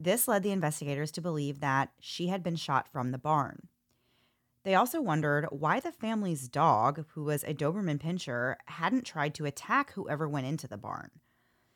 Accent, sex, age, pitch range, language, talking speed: American, female, 30-49, 140-180 Hz, English, 180 wpm